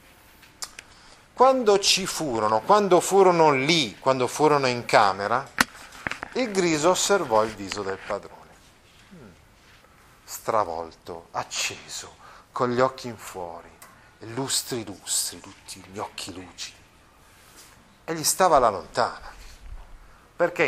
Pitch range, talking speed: 120-195 Hz, 105 wpm